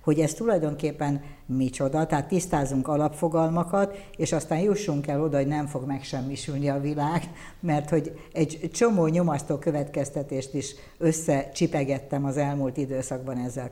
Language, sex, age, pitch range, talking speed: Hungarian, female, 60-79, 135-155 Hz, 130 wpm